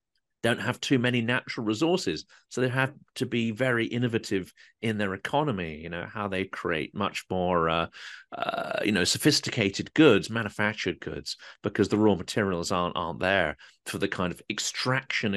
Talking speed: 170 wpm